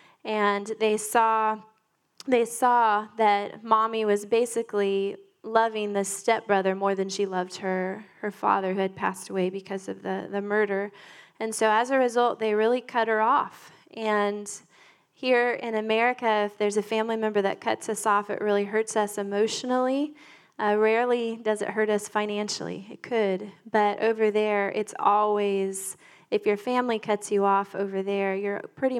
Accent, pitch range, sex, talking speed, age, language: American, 200-225 Hz, female, 165 wpm, 10-29, English